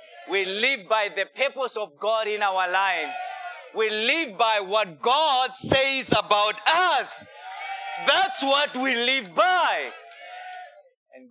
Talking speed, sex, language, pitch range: 125 wpm, male, English, 165-225 Hz